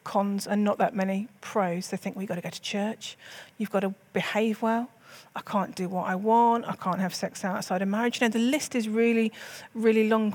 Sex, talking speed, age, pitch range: female, 240 wpm, 40-59, 195-235 Hz